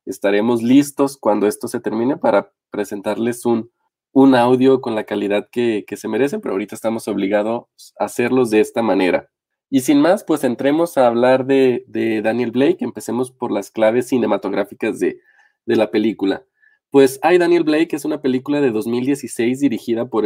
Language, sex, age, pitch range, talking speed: English, male, 20-39, 115-140 Hz, 175 wpm